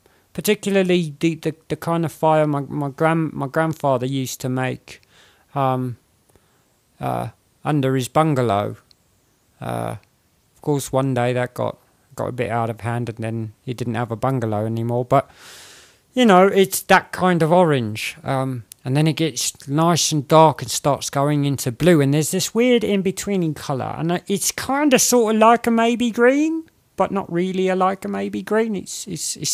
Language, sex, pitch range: English, male, 125-165 Hz